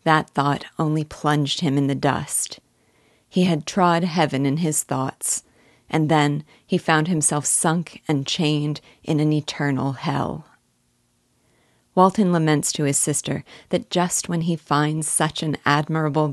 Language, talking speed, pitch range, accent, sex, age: English, 145 wpm, 145-165 Hz, American, female, 40-59